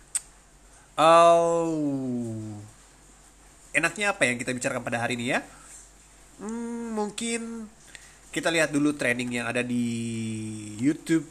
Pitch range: 120-170 Hz